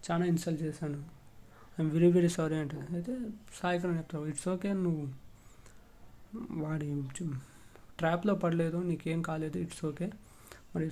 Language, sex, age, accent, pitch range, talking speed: Telugu, male, 20-39, native, 150-180 Hz, 120 wpm